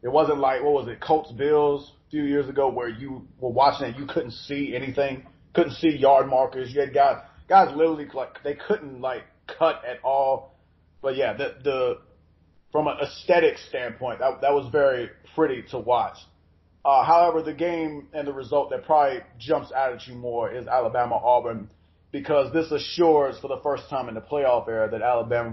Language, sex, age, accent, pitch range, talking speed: English, male, 30-49, American, 120-150 Hz, 195 wpm